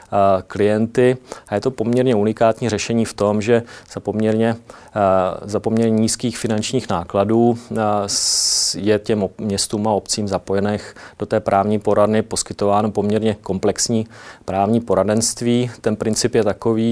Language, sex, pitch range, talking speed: Czech, male, 100-110 Hz, 125 wpm